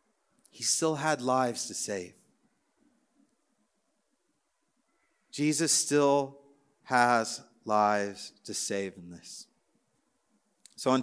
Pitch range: 135-175 Hz